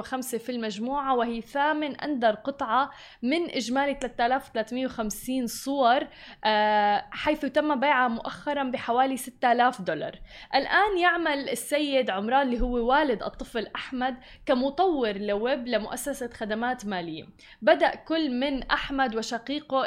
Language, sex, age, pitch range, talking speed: Arabic, female, 20-39, 230-280 Hz, 110 wpm